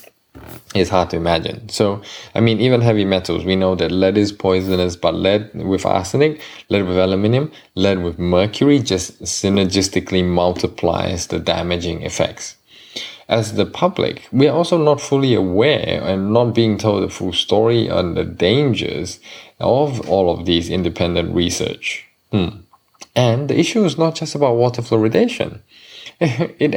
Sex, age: male, 20-39